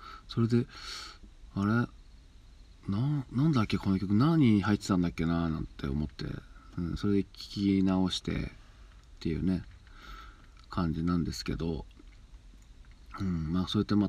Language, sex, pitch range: Japanese, male, 85-105 Hz